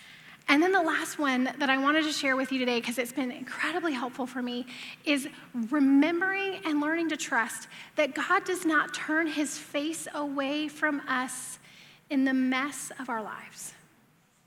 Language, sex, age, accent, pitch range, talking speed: English, female, 10-29, American, 265-330 Hz, 175 wpm